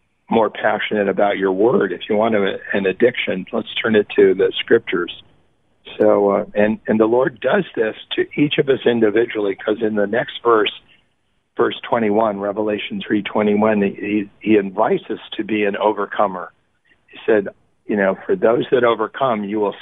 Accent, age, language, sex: American, 50-69, English, male